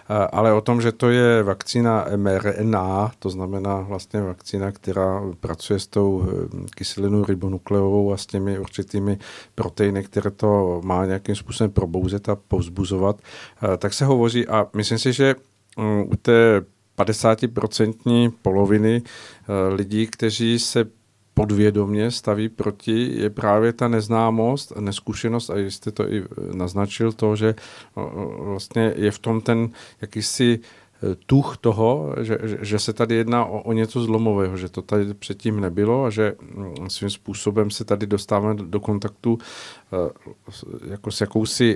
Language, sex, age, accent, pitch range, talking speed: Czech, male, 50-69, native, 100-115 Hz, 135 wpm